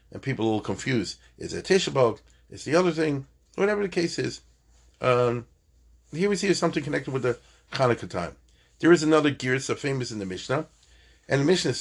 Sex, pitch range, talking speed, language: male, 90-130 Hz, 200 wpm, English